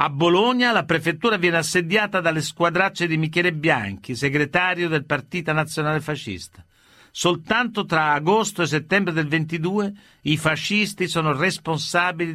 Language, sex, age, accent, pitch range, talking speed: Italian, male, 50-69, native, 140-185 Hz, 130 wpm